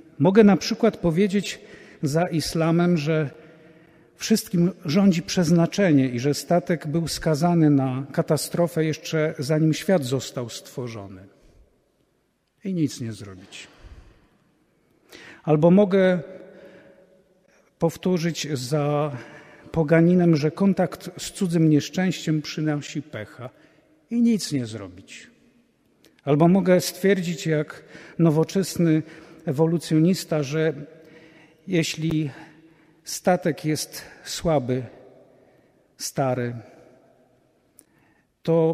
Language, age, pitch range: Polish, 50-69, 150-175 Hz